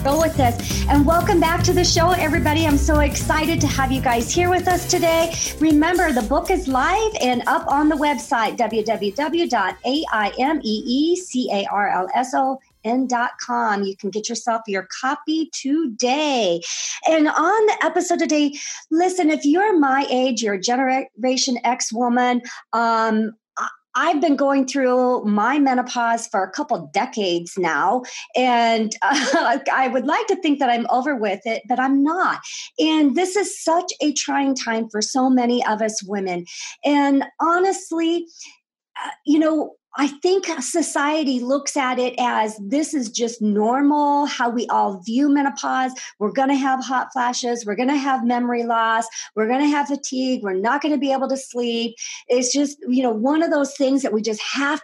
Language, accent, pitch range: English, American, 235-295 Hz